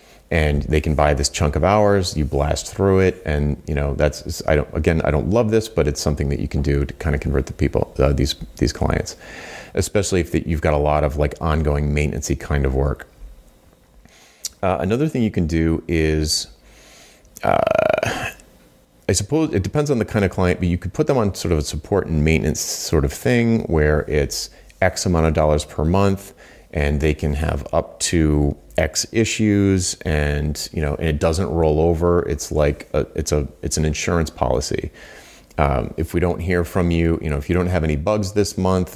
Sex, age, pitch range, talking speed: male, 30-49, 75-90 Hz, 210 wpm